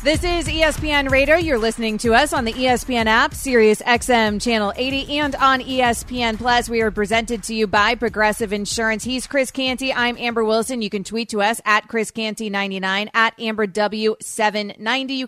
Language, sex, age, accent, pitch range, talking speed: English, female, 30-49, American, 215-265 Hz, 180 wpm